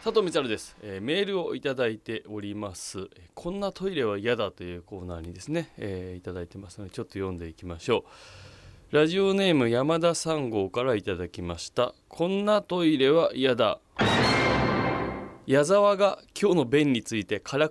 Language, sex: Japanese, male